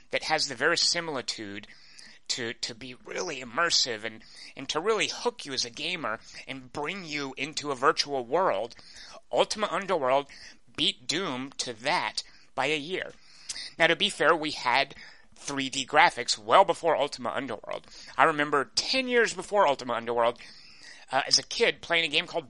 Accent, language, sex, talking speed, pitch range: American, English, male, 165 wpm, 115-155 Hz